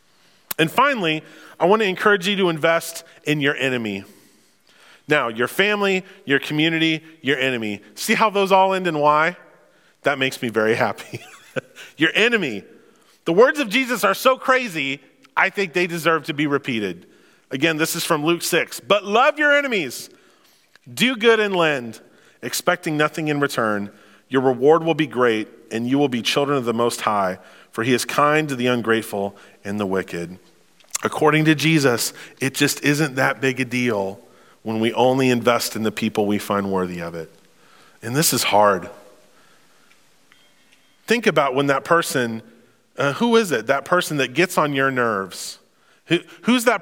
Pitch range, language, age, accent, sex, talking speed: 120-170 Hz, English, 30-49, American, male, 170 wpm